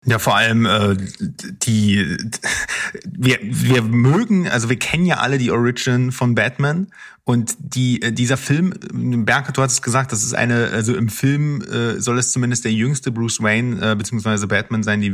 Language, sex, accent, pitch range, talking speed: German, male, German, 115-140 Hz, 180 wpm